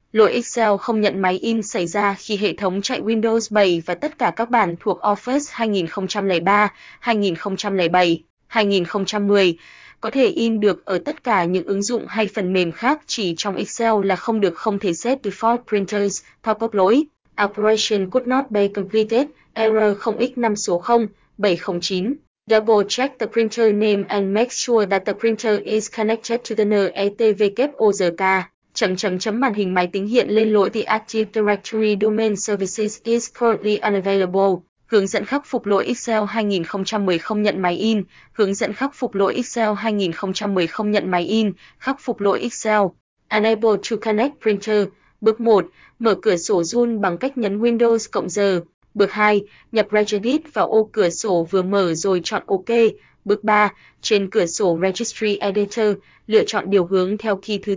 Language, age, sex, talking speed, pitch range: Vietnamese, 20-39, female, 170 wpm, 195-225 Hz